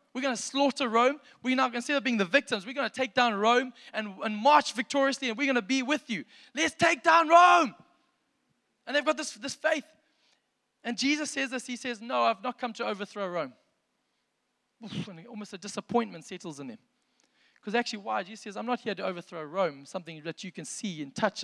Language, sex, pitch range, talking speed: English, male, 185-250 Hz, 225 wpm